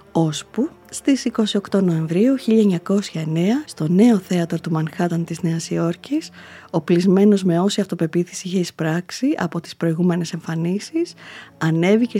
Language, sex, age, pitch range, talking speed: Greek, female, 20-39, 165-215 Hz, 120 wpm